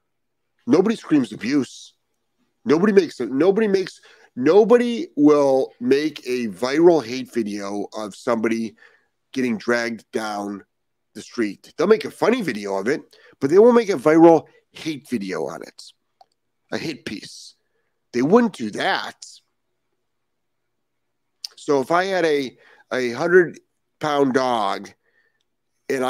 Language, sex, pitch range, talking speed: English, male, 115-190 Hz, 125 wpm